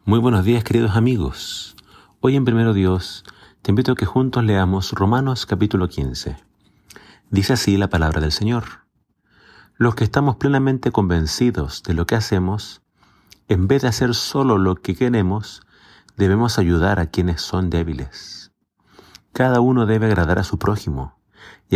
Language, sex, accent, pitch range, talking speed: Spanish, male, Argentinian, 90-115 Hz, 150 wpm